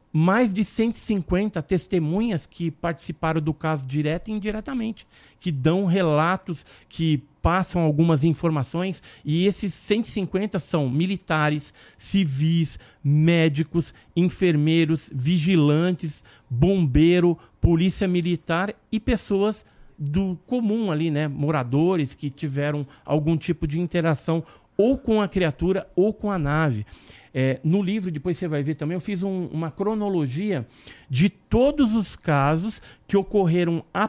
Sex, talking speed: male, 125 wpm